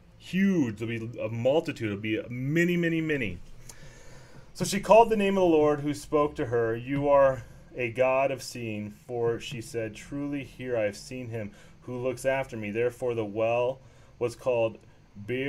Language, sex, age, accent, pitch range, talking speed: English, male, 30-49, American, 120-165 Hz, 180 wpm